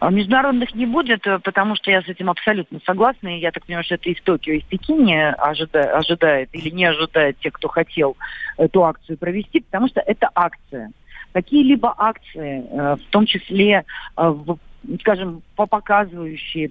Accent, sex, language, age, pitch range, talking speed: native, female, Russian, 40-59, 165-210 Hz, 160 wpm